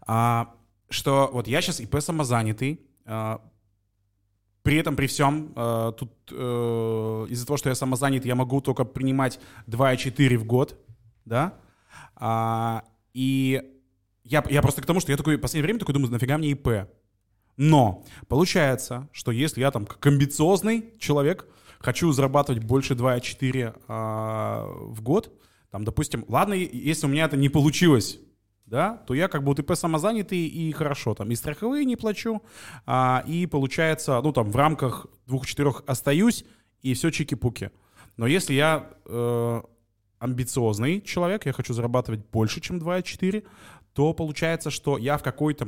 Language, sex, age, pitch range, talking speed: Russian, male, 20-39, 115-150 Hz, 150 wpm